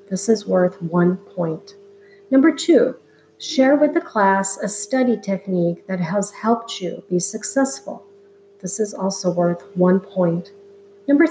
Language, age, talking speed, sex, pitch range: English, 50-69, 145 wpm, female, 195-240 Hz